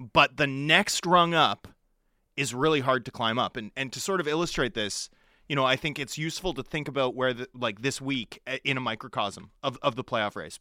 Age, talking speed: 30-49, 225 wpm